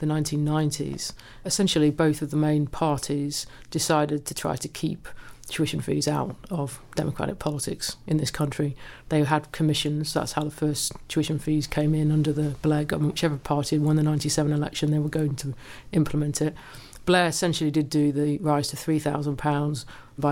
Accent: British